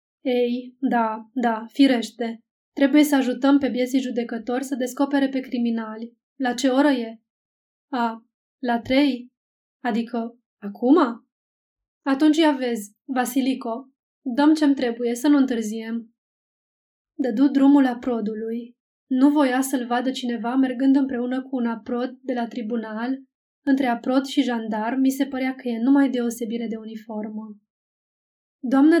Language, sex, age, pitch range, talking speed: Romanian, female, 20-39, 235-270 Hz, 130 wpm